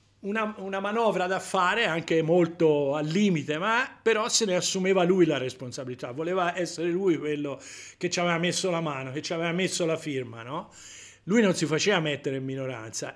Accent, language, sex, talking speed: native, Italian, male, 185 wpm